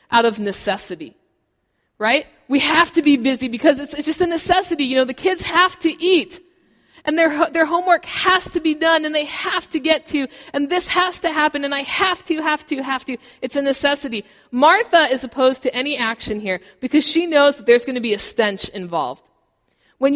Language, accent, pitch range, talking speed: English, American, 230-315 Hz, 210 wpm